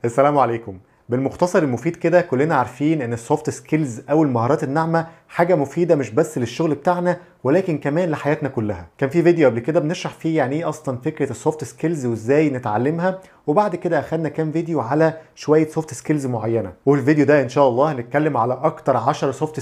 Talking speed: 175 wpm